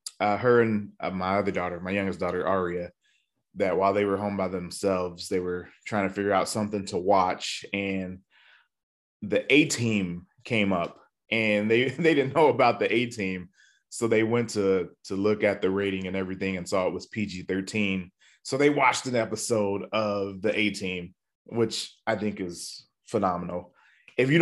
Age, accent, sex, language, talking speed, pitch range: 20-39, American, male, English, 185 wpm, 95-120 Hz